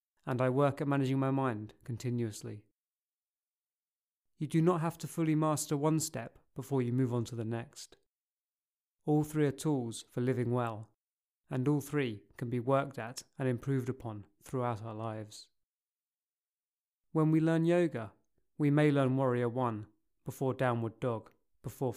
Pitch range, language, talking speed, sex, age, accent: 115-145 Hz, English, 155 wpm, male, 30-49, British